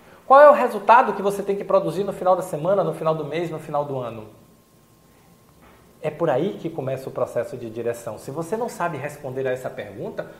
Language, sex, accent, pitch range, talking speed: Portuguese, male, Brazilian, 135-195 Hz, 220 wpm